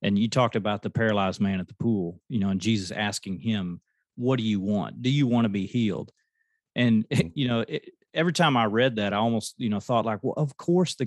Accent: American